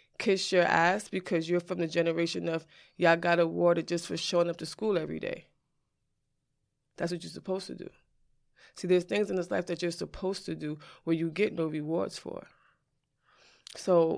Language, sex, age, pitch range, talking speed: English, female, 20-39, 165-195 Hz, 185 wpm